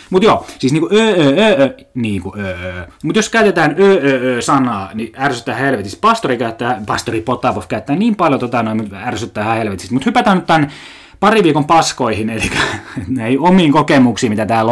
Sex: male